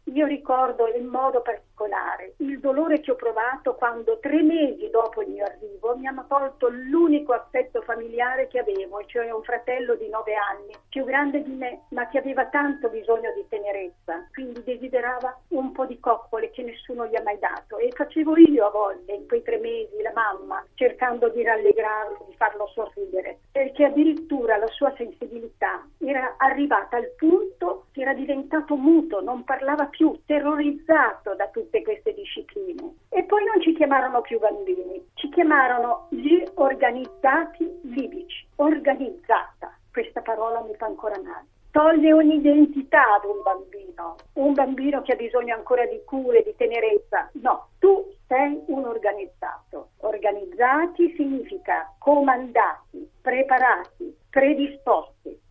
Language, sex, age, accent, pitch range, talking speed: Italian, female, 50-69, native, 230-315 Hz, 145 wpm